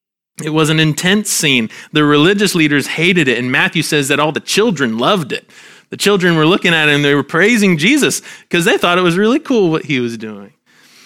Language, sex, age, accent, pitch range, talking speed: English, male, 30-49, American, 130-180 Hz, 225 wpm